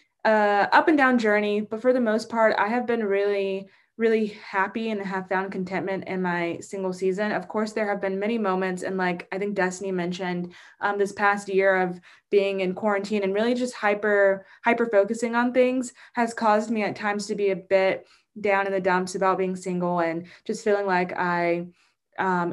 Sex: female